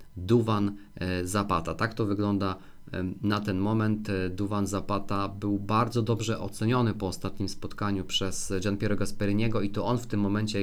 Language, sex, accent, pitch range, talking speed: Polish, male, native, 95-110 Hz, 155 wpm